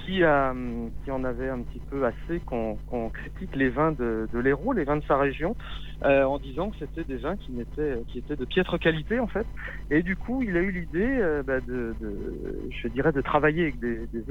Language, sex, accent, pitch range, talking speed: French, male, French, 120-160 Hz, 225 wpm